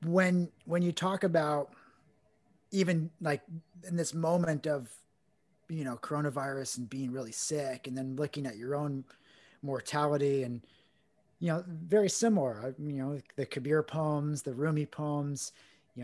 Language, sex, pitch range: English, male, 130-170 Hz